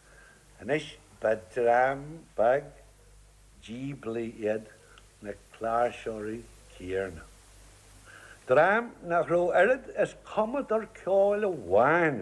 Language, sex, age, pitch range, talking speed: English, male, 60-79, 120-195 Hz, 60 wpm